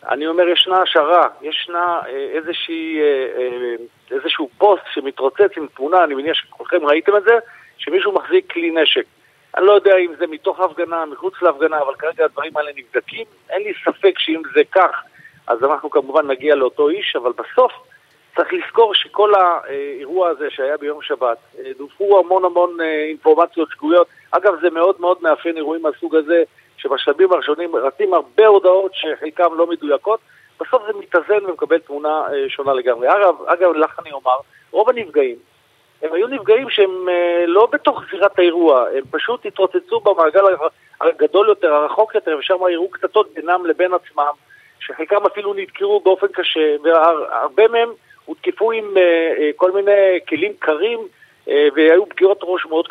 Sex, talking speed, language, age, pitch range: male, 150 wpm, Hebrew, 50-69, 160-255 Hz